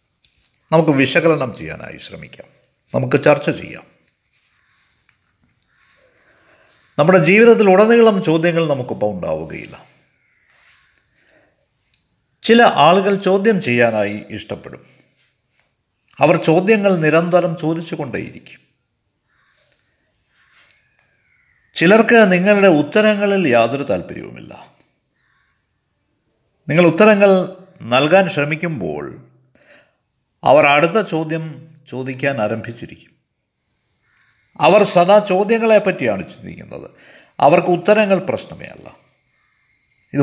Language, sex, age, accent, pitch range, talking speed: Malayalam, male, 50-69, native, 130-195 Hz, 70 wpm